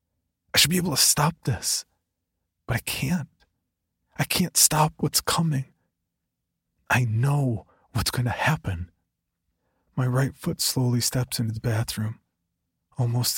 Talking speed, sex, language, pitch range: 135 wpm, male, English, 85-125 Hz